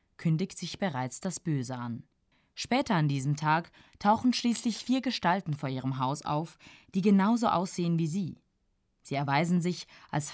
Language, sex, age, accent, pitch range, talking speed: German, female, 20-39, German, 150-205 Hz, 155 wpm